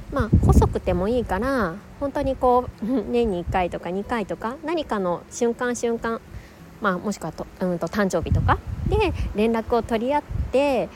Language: Japanese